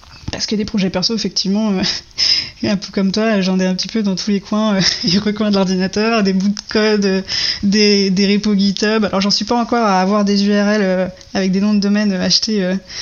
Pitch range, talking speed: 185-215 Hz, 235 wpm